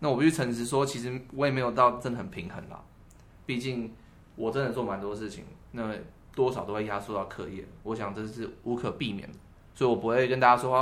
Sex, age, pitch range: male, 20-39, 100-135 Hz